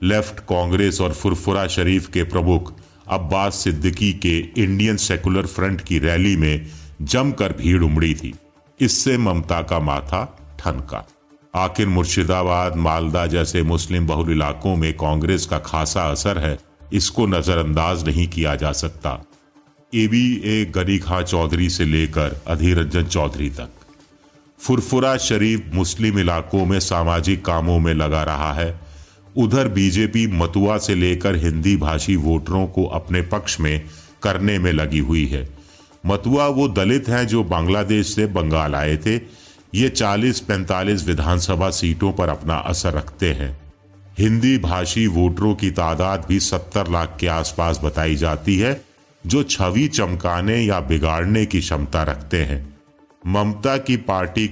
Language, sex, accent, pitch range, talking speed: Hindi, male, native, 80-105 Hz, 140 wpm